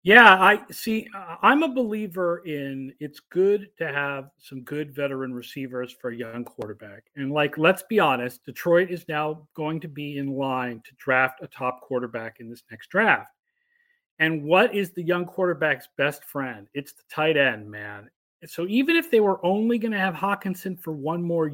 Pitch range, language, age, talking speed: 145-200 Hz, English, 40-59, 185 wpm